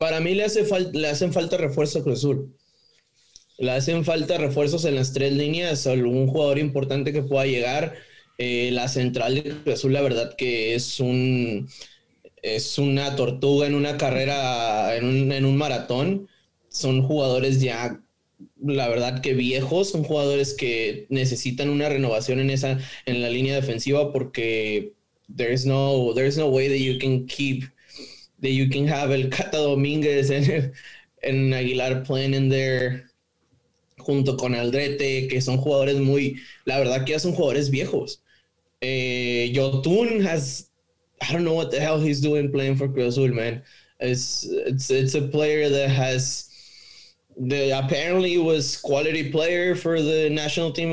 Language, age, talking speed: English, 20-39, 160 wpm